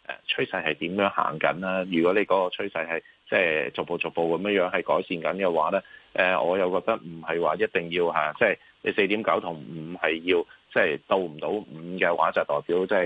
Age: 30-49